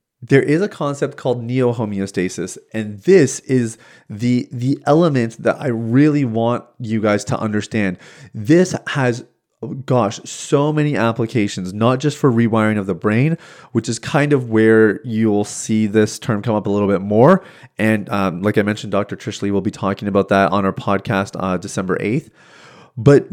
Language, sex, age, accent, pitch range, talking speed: English, male, 30-49, American, 105-135 Hz, 175 wpm